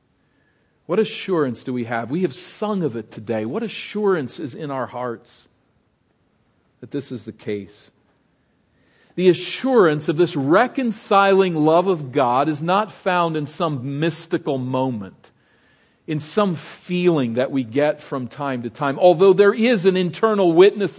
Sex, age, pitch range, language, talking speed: male, 50-69, 140-195 Hz, English, 150 wpm